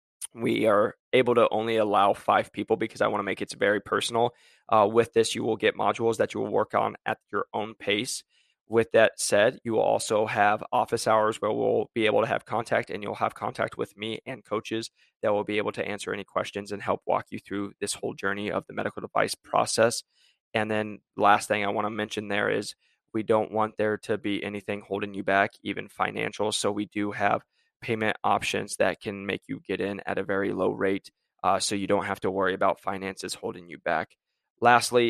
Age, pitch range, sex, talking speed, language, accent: 20-39, 100-115 Hz, male, 220 wpm, English, American